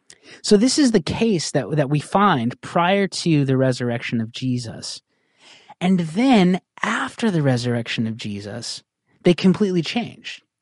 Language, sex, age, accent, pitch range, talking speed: English, male, 30-49, American, 130-185 Hz, 140 wpm